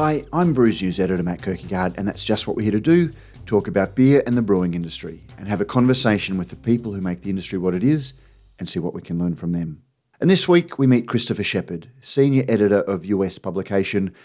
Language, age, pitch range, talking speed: English, 40-59, 90-115 Hz, 235 wpm